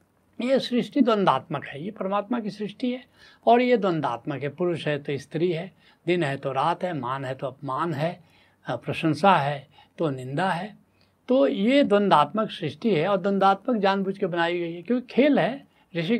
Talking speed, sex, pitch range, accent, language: 180 wpm, male, 150-220 Hz, native, Hindi